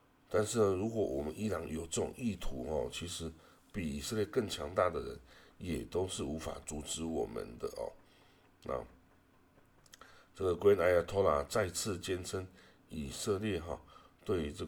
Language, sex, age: Chinese, male, 60-79